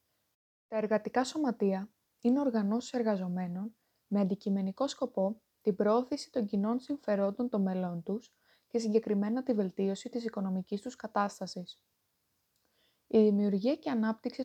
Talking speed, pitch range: 120 wpm, 195-230 Hz